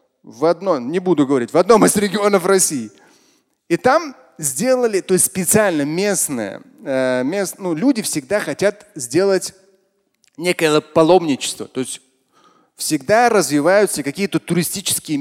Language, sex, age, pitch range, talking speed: Russian, male, 30-49, 145-195 Hz, 115 wpm